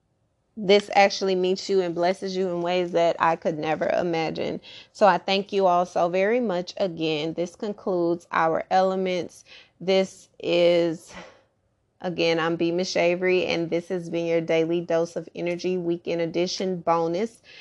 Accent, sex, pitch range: American, female, 165-190 Hz